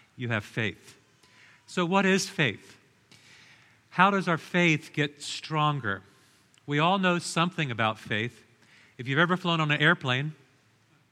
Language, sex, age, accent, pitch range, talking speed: English, male, 50-69, American, 125-160 Hz, 140 wpm